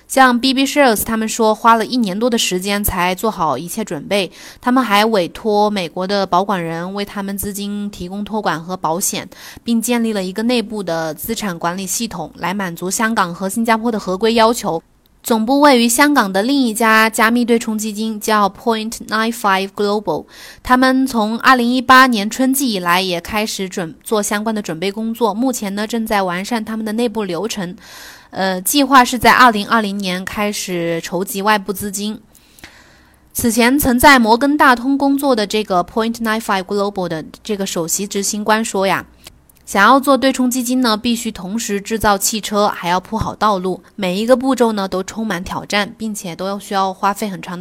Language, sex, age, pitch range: Chinese, female, 20-39, 195-235 Hz